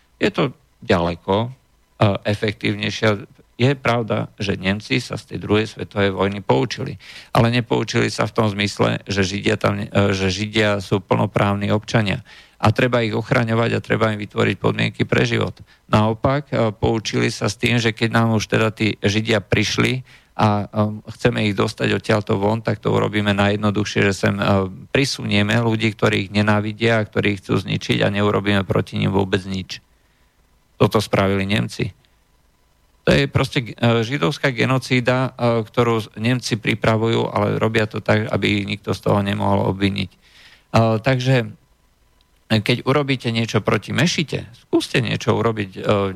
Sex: male